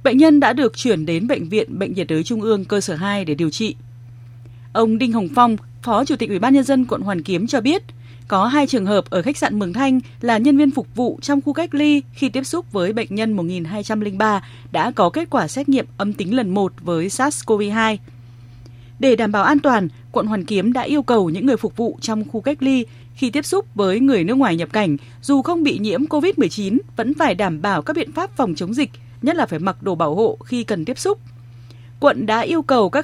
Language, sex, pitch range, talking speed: Vietnamese, female, 180-270 Hz, 240 wpm